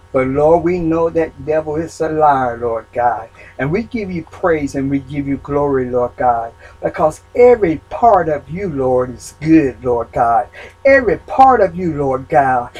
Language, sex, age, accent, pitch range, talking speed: English, male, 60-79, American, 145-240 Hz, 185 wpm